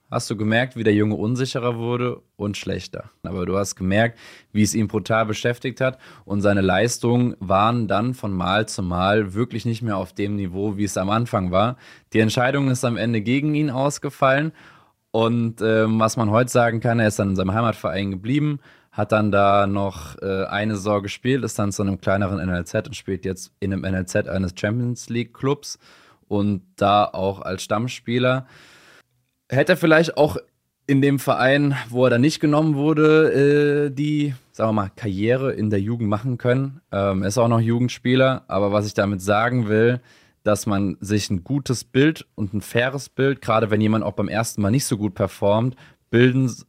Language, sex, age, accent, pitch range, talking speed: German, male, 20-39, German, 100-125 Hz, 185 wpm